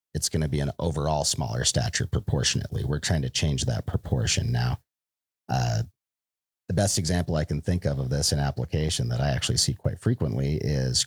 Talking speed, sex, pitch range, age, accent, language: 190 wpm, male, 70-90 Hz, 40-59, American, English